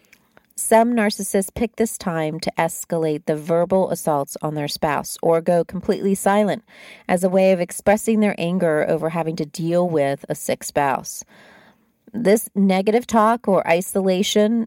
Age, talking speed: 40-59, 150 wpm